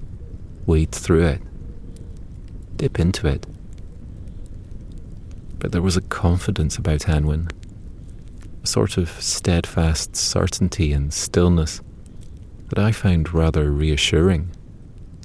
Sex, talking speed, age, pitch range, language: male, 100 wpm, 30-49, 80-95 Hz, English